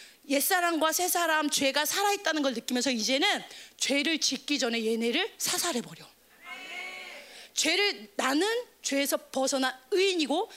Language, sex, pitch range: Korean, female, 260-365 Hz